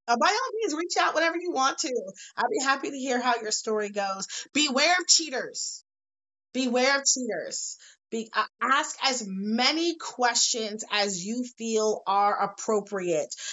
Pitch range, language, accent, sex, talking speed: 190-255 Hz, English, American, female, 160 wpm